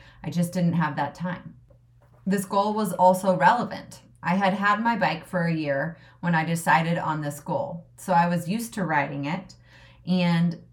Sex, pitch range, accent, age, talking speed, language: female, 150-185 Hz, American, 30-49, 185 wpm, English